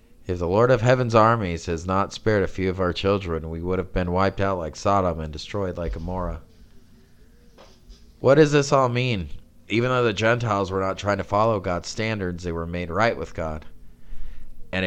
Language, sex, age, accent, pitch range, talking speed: English, male, 30-49, American, 85-105 Hz, 200 wpm